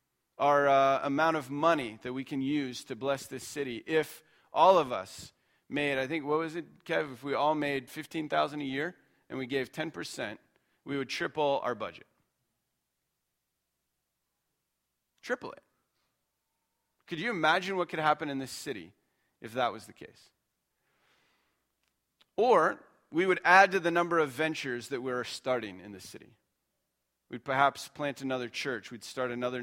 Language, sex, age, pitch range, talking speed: English, male, 40-59, 115-150 Hz, 160 wpm